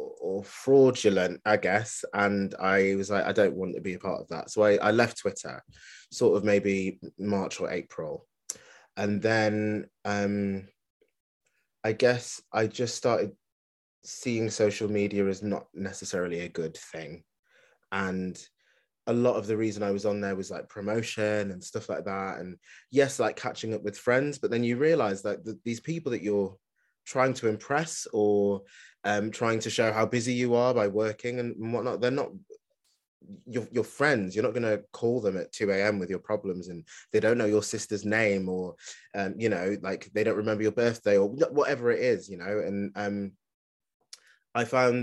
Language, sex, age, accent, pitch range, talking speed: English, male, 20-39, British, 100-115 Hz, 185 wpm